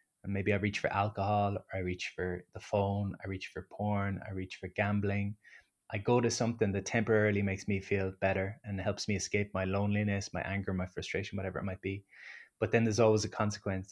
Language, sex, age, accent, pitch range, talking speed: English, male, 20-39, Irish, 100-110 Hz, 215 wpm